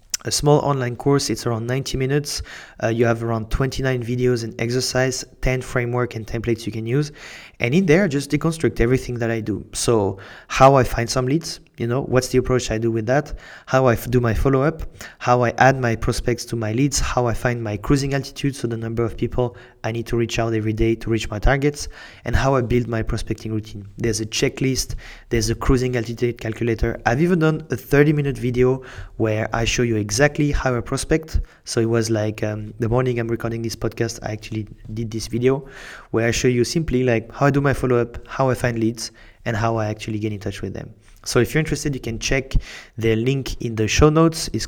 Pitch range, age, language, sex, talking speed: 115-130 Hz, 30-49, English, male, 225 wpm